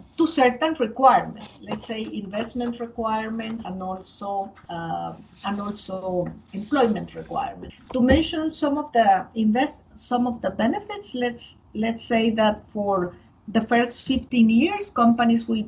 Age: 50-69